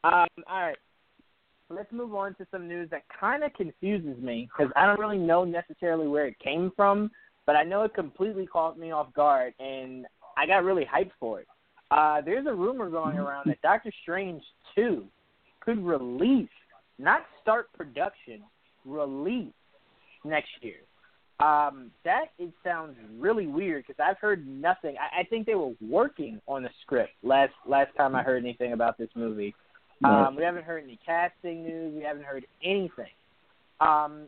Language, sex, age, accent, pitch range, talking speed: English, male, 20-39, American, 145-195 Hz, 170 wpm